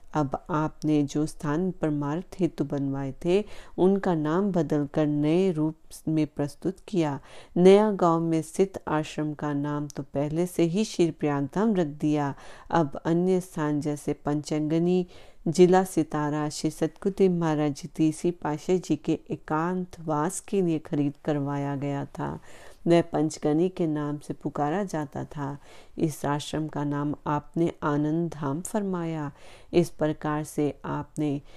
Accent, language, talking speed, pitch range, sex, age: native, Hindi, 140 wpm, 150-175 Hz, female, 40-59